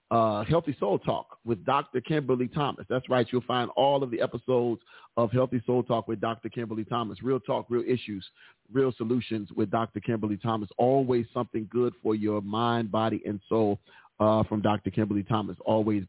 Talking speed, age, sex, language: 185 wpm, 40-59, male, English